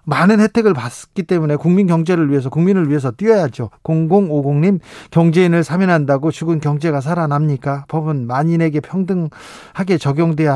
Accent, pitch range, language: native, 150-190 Hz, Korean